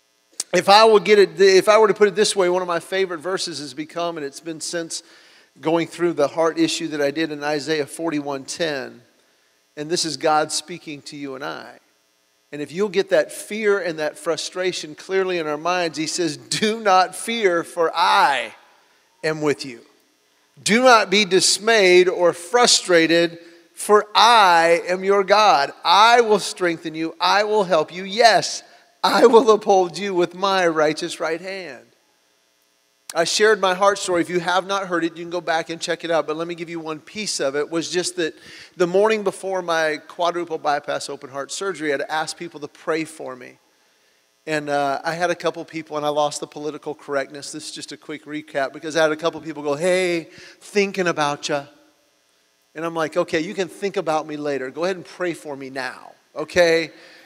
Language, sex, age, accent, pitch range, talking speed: English, male, 40-59, American, 150-185 Hz, 200 wpm